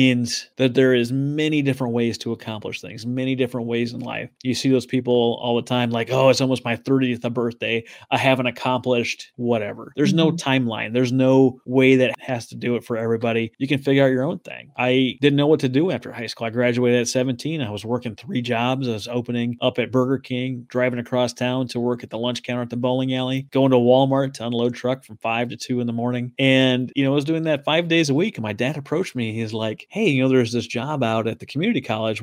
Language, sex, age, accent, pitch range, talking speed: English, male, 30-49, American, 120-135 Hz, 250 wpm